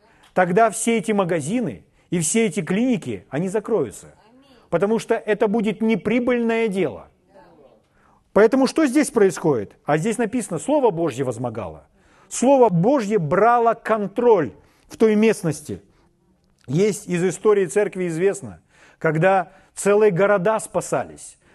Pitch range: 175-230 Hz